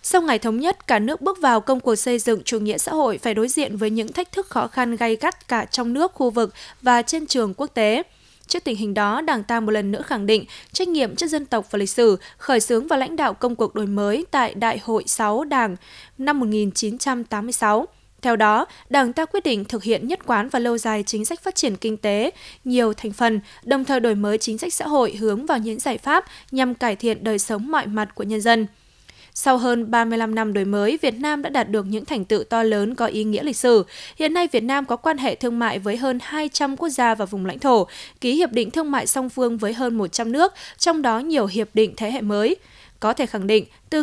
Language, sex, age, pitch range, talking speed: Vietnamese, female, 20-39, 215-275 Hz, 245 wpm